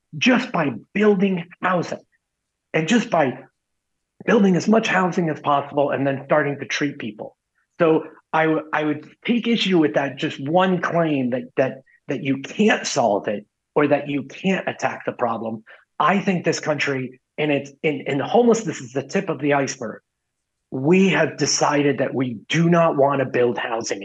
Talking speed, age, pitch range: 175 wpm, 30-49, 135-165 Hz